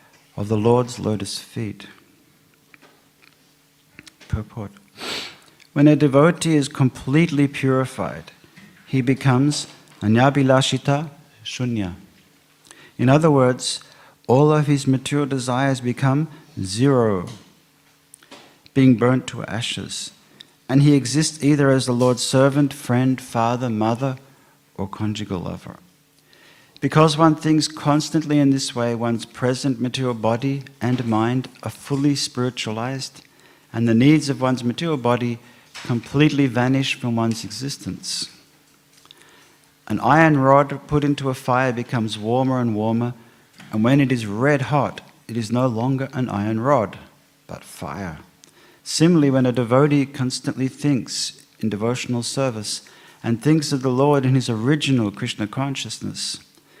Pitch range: 120-145 Hz